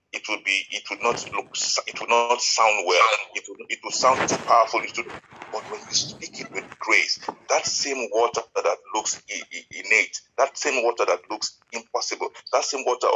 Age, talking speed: 50-69, 195 wpm